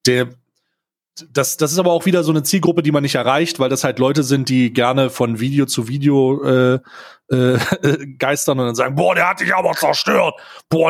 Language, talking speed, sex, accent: German, 210 wpm, male, German